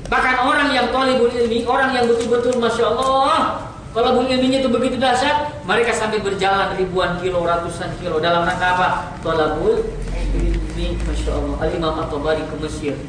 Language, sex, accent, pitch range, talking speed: Indonesian, female, native, 155-265 Hz, 165 wpm